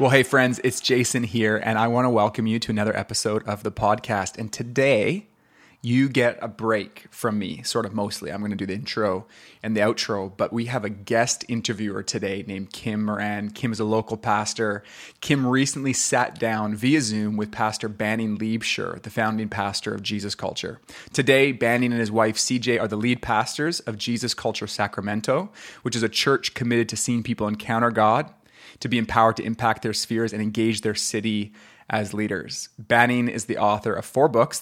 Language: English